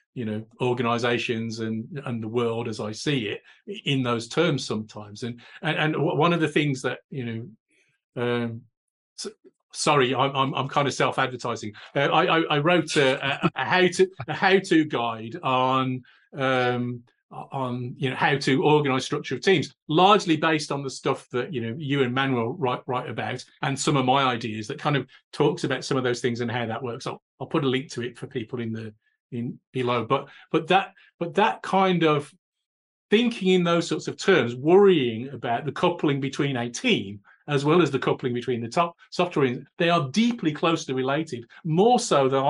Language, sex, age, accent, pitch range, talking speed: English, male, 40-59, British, 120-155 Hz, 195 wpm